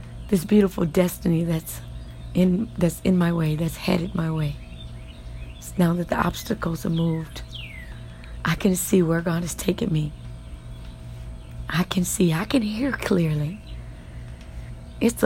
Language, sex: English, female